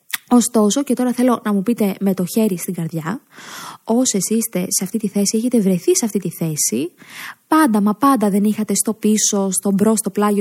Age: 20-39